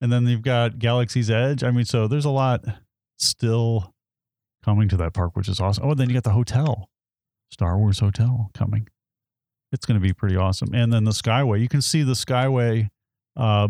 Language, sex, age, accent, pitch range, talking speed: English, male, 30-49, American, 105-125 Hz, 205 wpm